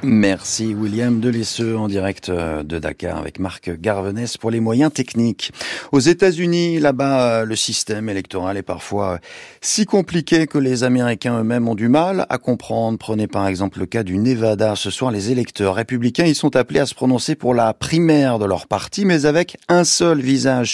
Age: 30-49